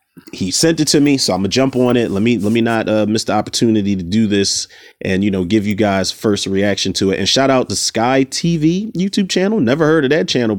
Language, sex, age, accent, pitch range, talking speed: English, male, 30-49, American, 110-145 Hz, 260 wpm